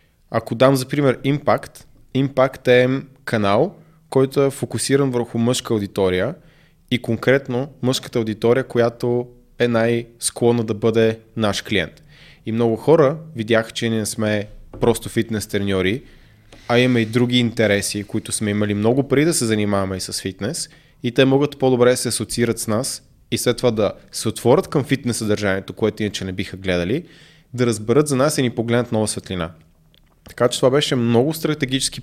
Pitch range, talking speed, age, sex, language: 110-135 Hz, 170 wpm, 20-39, male, Bulgarian